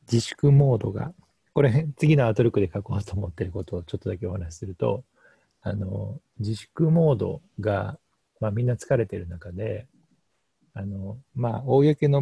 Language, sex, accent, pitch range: Japanese, male, native, 100-125 Hz